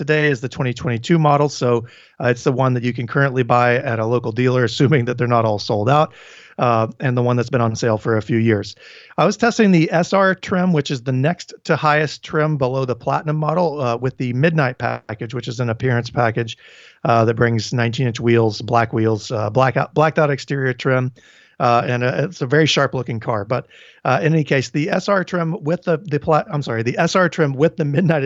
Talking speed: 220 wpm